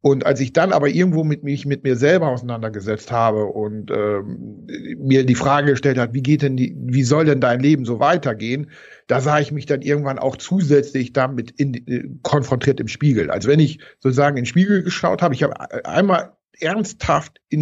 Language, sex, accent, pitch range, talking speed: German, male, German, 125-150 Hz, 200 wpm